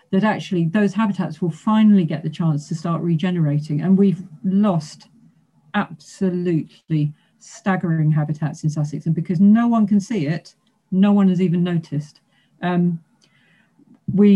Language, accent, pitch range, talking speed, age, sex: English, British, 165-220 Hz, 140 wpm, 40-59, female